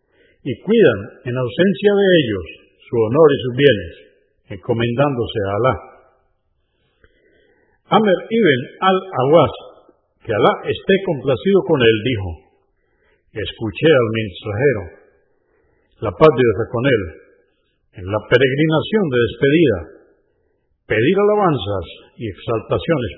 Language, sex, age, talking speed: Spanish, male, 50-69, 110 wpm